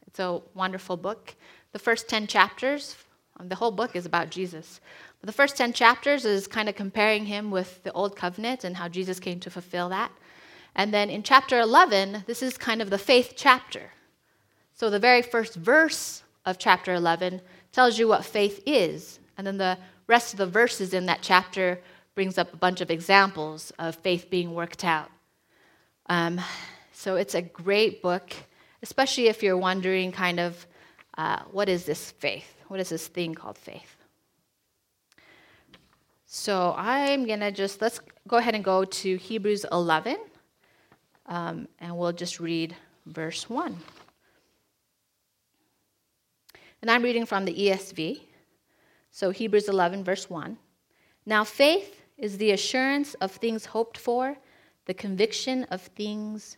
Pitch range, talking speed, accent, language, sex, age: 180-230 Hz, 155 wpm, American, English, female, 30-49